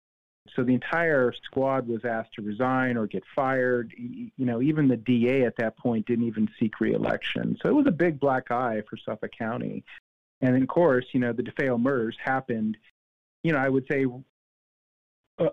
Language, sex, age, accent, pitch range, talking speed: English, male, 40-59, American, 115-135 Hz, 190 wpm